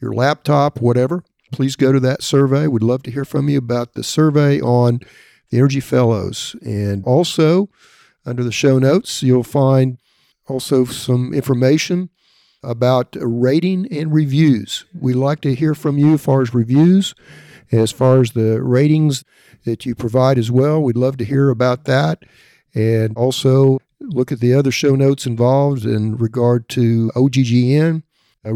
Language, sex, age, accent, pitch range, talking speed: English, male, 50-69, American, 125-145 Hz, 160 wpm